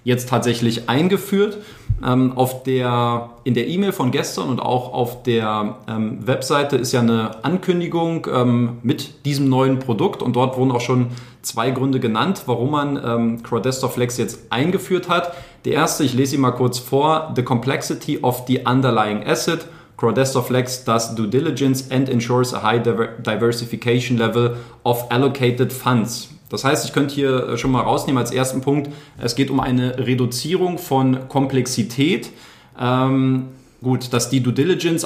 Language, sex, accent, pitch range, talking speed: German, male, German, 120-140 Hz, 155 wpm